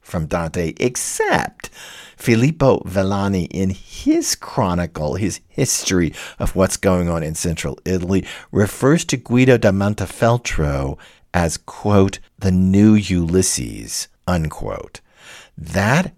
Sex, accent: male, American